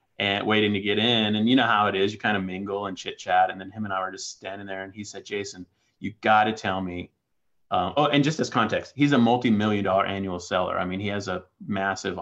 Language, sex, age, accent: English, male, 30-49, American